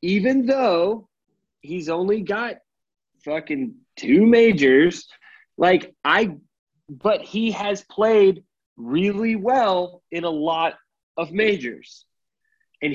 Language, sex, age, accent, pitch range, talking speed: English, male, 30-49, American, 145-205 Hz, 105 wpm